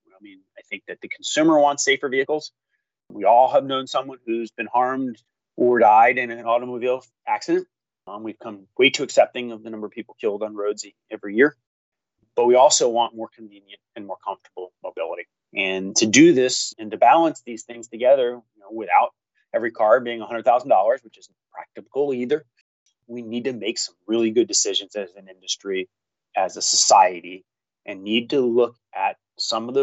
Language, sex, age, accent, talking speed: English, male, 30-49, American, 185 wpm